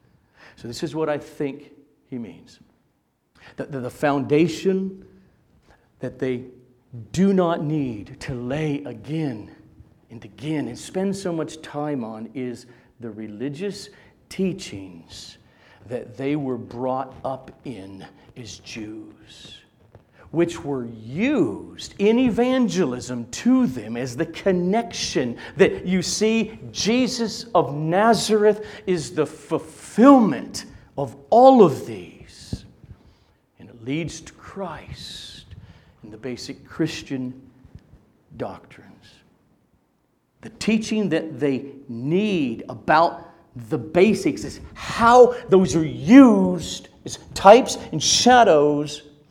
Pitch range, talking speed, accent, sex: 125-185 Hz, 110 wpm, American, male